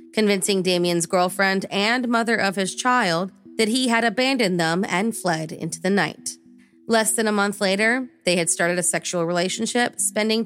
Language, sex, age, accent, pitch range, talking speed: English, female, 30-49, American, 180-230 Hz, 170 wpm